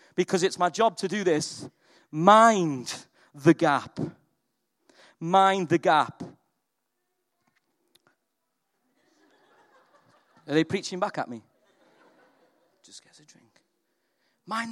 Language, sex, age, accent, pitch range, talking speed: English, male, 40-59, British, 185-230 Hz, 100 wpm